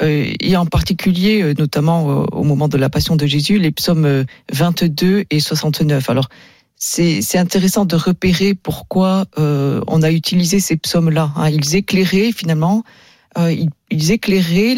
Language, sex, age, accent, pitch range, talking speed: French, female, 40-59, French, 145-185 Hz, 145 wpm